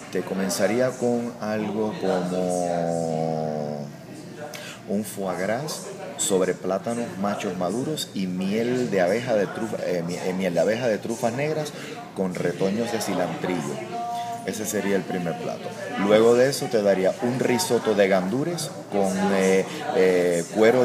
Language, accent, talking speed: Spanish, Venezuelan, 120 wpm